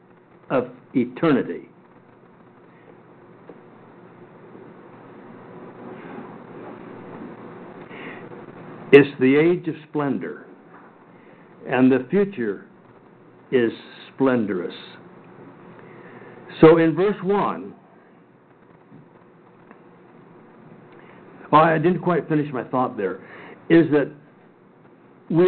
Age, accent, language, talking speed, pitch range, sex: 60-79, American, English, 60 wpm, 150-195 Hz, male